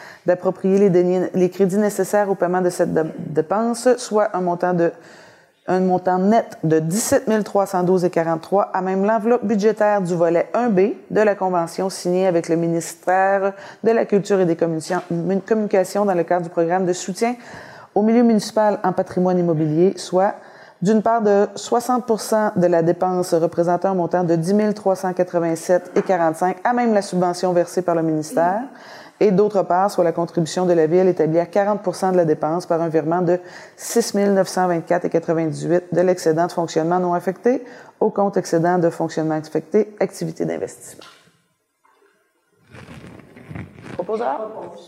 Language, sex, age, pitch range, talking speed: French, female, 30-49, 175-215 Hz, 155 wpm